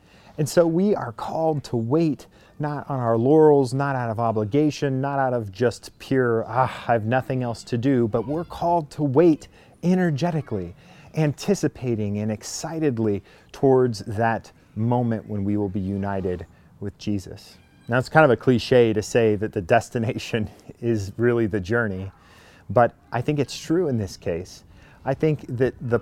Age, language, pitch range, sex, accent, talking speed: 30-49, English, 105-135 Hz, male, American, 170 wpm